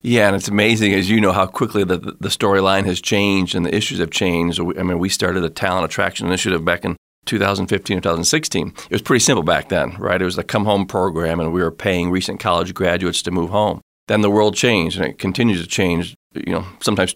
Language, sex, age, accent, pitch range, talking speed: English, male, 40-59, American, 90-110 Hz, 225 wpm